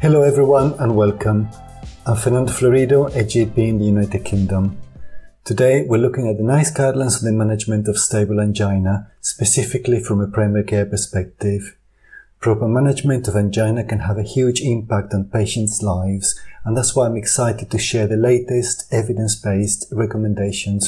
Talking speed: 160 wpm